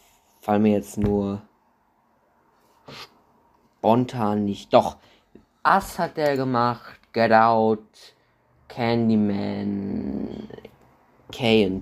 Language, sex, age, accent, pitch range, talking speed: German, male, 20-39, German, 105-135 Hz, 70 wpm